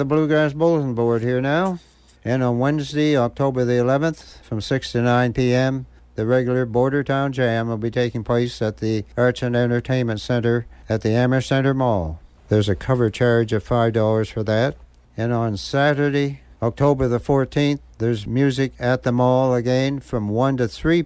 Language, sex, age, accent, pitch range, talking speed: English, male, 60-79, American, 115-140 Hz, 175 wpm